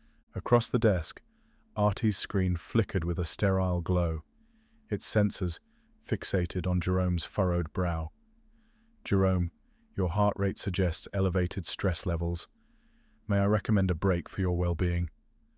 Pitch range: 90-105 Hz